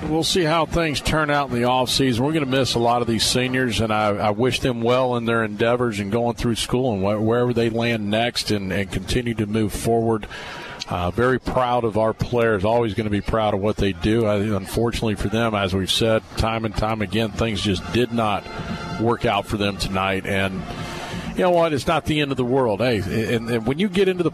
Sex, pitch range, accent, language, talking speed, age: male, 105-125 Hz, American, English, 240 wpm, 40-59